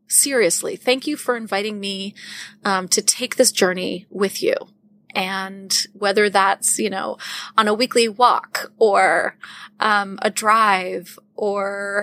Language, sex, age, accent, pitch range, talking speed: English, female, 20-39, American, 200-250 Hz, 135 wpm